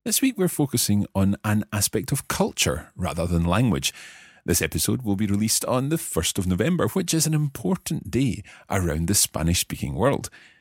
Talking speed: 175 wpm